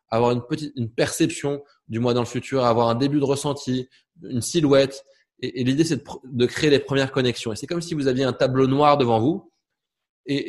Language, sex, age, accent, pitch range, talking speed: French, male, 20-39, French, 120-140 Hz, 225 wpm